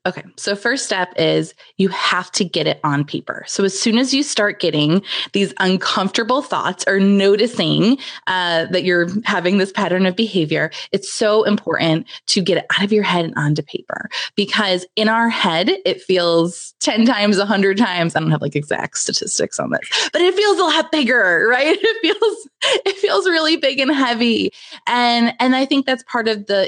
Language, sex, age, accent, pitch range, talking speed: English, female, 20-39, American, 180-235 Hz, 195 wpm